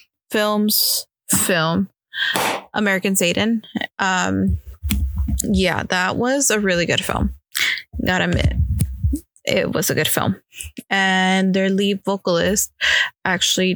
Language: English